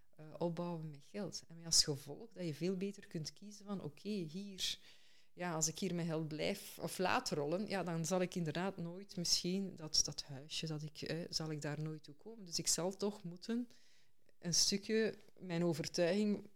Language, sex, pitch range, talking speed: Dutch, female, 160-195 Hz, 205 wpm